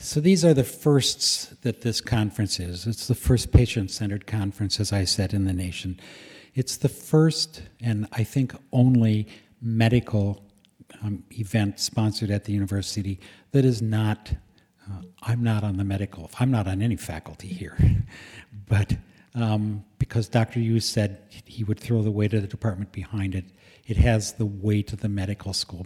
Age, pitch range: 60-79, 95-115 Hz